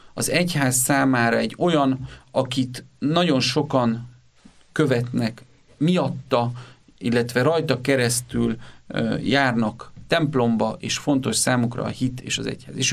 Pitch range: 125-170 Hz